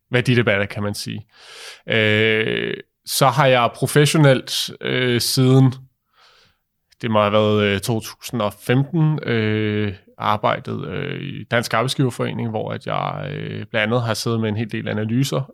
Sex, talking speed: male, 145 wpm